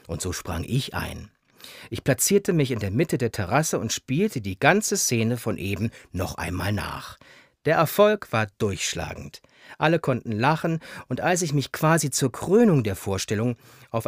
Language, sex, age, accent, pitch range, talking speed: German, male, 40-59, German, 115-165 Hz, 170 wpm